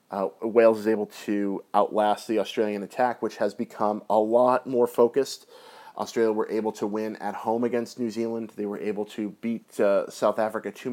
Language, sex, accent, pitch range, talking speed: English, male, American, 105-120 Hz, 190 wpm